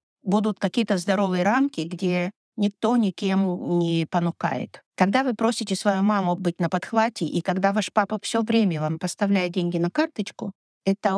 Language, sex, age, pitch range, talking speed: Russian, female, 50-69, 175-215 Hz, 155 wpm